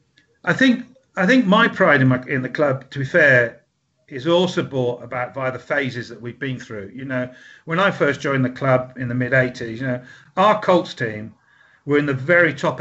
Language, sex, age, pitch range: English, male, 50-69, 130-160 Hz